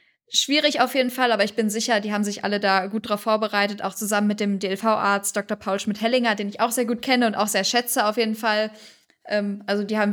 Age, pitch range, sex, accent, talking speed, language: 10-29, 200-220 Hz, female, German, 245 wpm, German